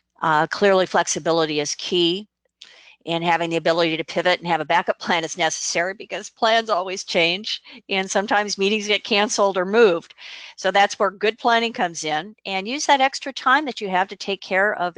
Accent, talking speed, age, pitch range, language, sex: American, 190 wpm, 50-69, 170-205 Hz, English, female